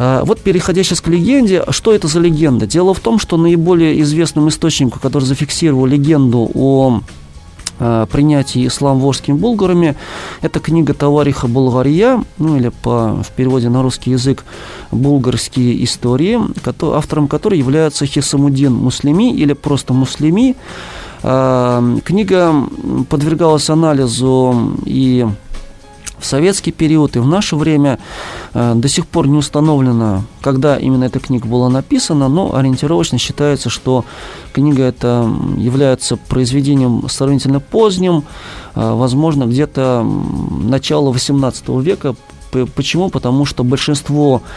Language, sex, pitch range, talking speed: Russian, male, 125-155 Hz, 120 wpm